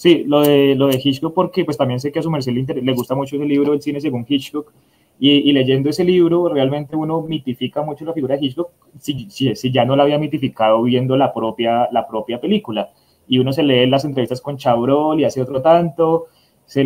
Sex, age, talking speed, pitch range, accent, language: male, 20-39, 230 wpm, 125-150 Hz, Colombian, Spanish